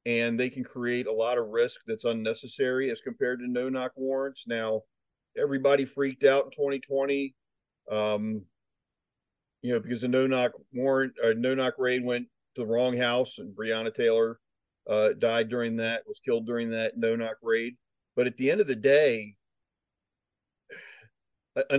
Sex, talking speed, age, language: male, 155 wpm, 40-59, English